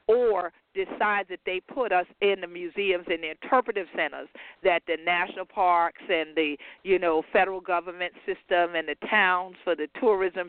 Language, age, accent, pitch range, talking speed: English, 50-69, American, 175-225 Hz, 175 wpm